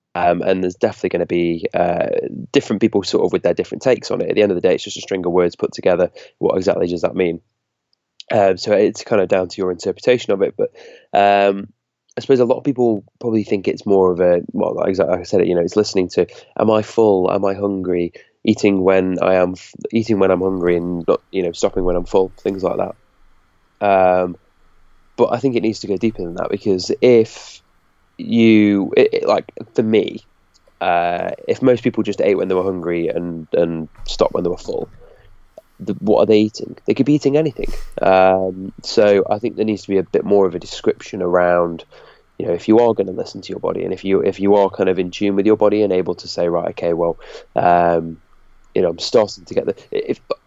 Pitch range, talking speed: 90-115 Hz, 230 wpm